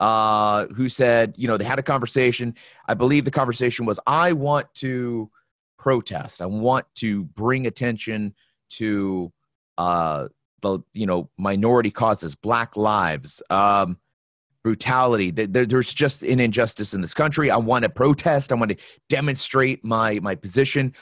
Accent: American